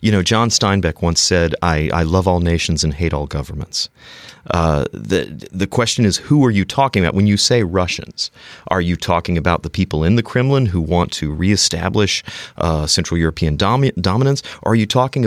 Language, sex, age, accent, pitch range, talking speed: English, male, 30-49, American, 85-110 Hz, 200 wpm